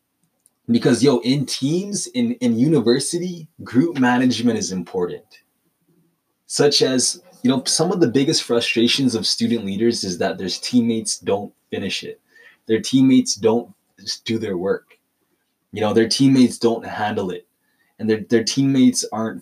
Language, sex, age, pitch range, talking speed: English, male, 20-39, 115-140 Hz, 150 wpm